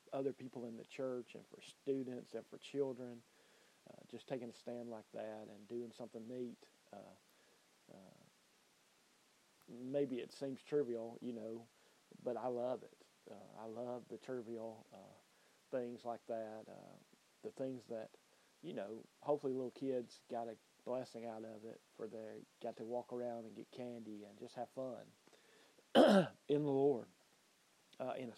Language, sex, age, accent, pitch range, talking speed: English, male, 40-59, American, 115-130 Hz, 165 wpm